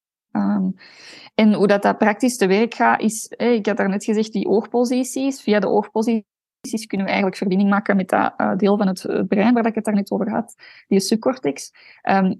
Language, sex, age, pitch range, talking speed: Dutch, female, 20-39, 190-220 Hz, 205 wpm